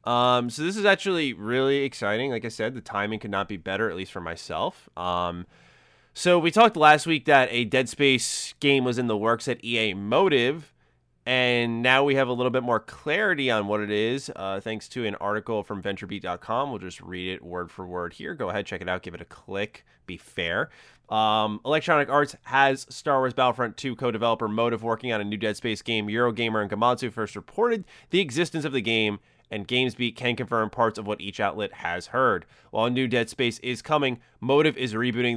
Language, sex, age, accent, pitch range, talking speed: English, male, 20-39, American, 105-130 Hz, 210 wpm